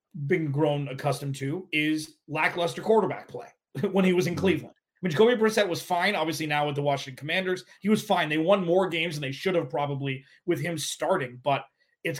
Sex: male